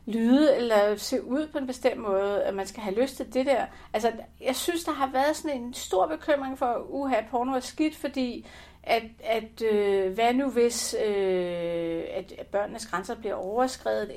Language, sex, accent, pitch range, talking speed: Danish, female, native, 195-255 Hz, 190 wpm